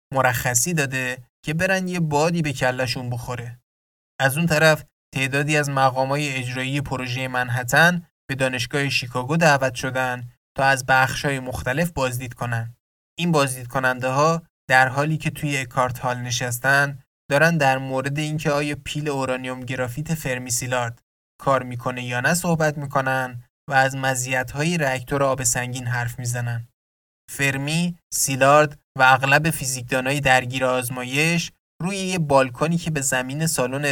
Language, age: Persian, 20-39